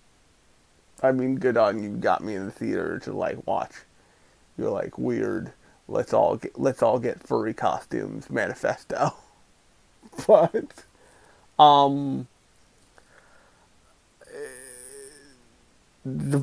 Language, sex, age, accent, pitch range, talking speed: English, male, 30-49, American, 115-145 Hz, 100 wpm